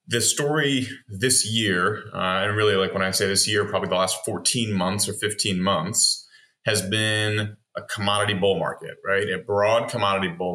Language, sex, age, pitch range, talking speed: English, male, 30-49, 95-120 Hz, 180 wpm